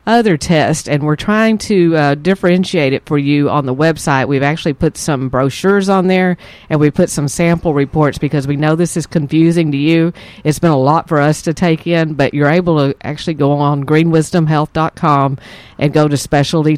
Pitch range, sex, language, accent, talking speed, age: 145-165 Hz, female, English, American, 200 wpm, 50-69